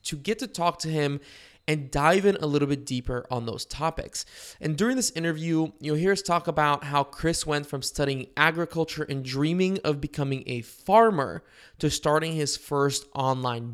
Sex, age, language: male, 20-39, English